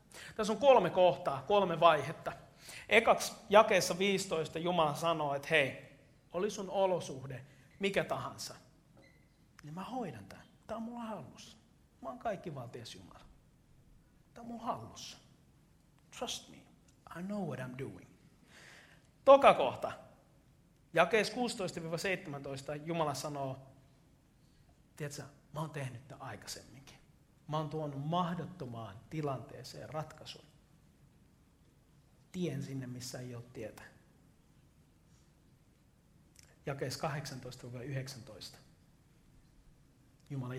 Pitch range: 130-170 Hz